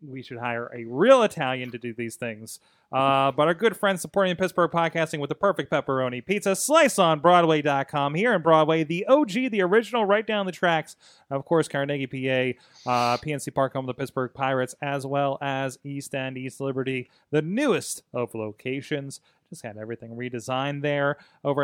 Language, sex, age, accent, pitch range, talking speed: English, male, 30-49, American, 135-180 Hz, 175 wpm